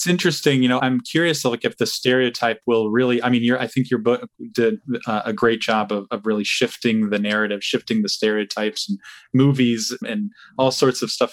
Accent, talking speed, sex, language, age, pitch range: American, 210 wpm, male, English, 20-39, 110-140 Hz